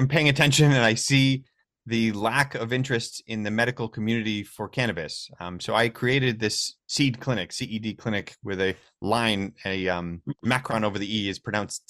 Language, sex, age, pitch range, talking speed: English, male, 30-49, 105-125 Hz, 180 wpm